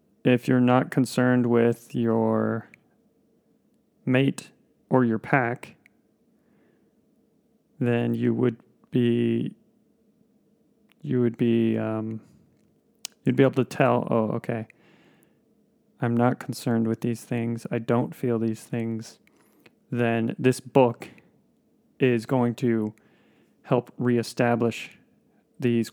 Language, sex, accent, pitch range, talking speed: English, male, American, 115-135 Hz, 105 wpm